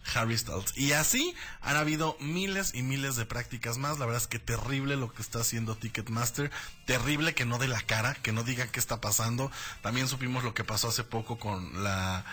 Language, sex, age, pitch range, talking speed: Spanish, male, 20-39, 115-150 Hz, 210 wpm